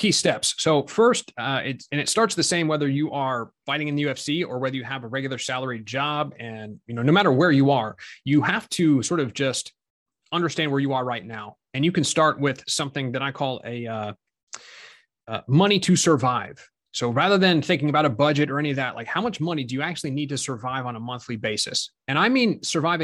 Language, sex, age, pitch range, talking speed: English, male, 30-49, 125-155 Hz, 235 wpm